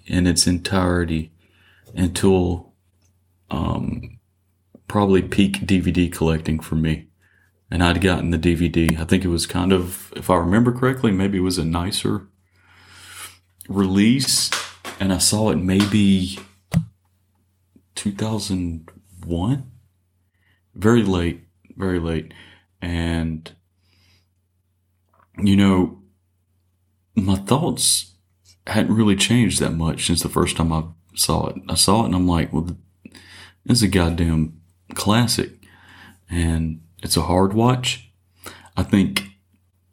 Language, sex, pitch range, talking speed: English, male, 90-100 Hz, 115 wpm